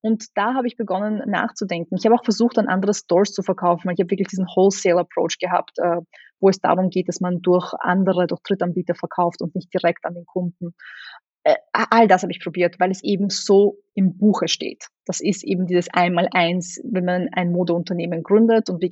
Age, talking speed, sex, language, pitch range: 20-39, 195 wpm, female, German, 180-220 Hz